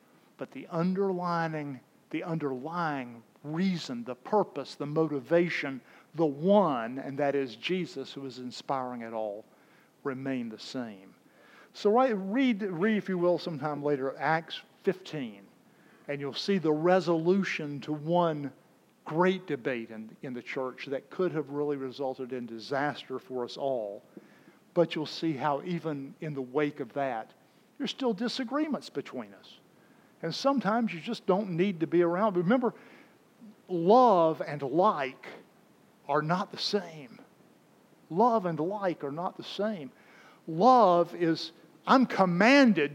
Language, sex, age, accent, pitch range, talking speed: English, male, 50-69, American, 145-210 Hz, 140 wpm